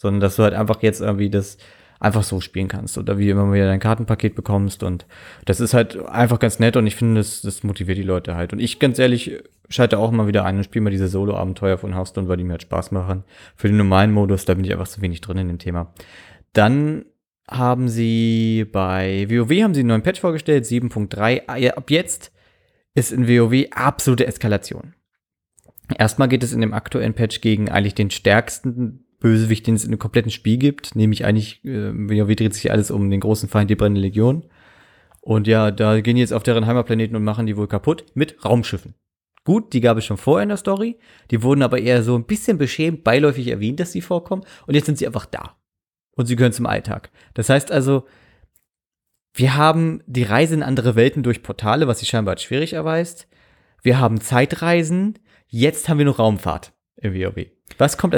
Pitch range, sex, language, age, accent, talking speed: 100-125 Hz, male, German, 30-49, German, 210 wpm